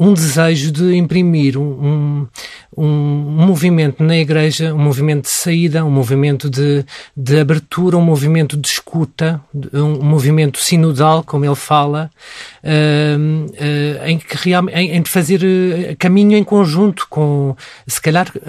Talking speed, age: 120 wpm, 40-59